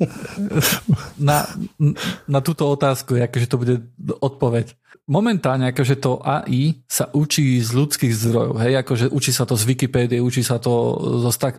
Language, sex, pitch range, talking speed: Slovak, male, 125-150 Hz, 150 wpm